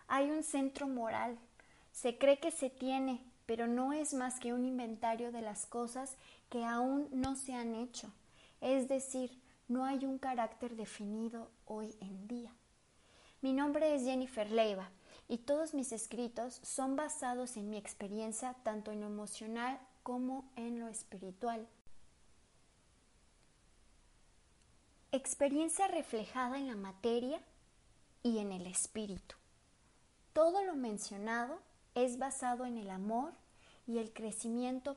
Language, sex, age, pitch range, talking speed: Spanish, female, 20-39, 220-270 Hz, 130 wpm